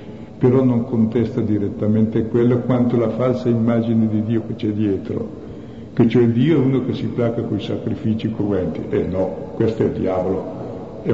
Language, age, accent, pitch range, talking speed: Italian, 50-69, native, 110-120 Hz, 180 wpm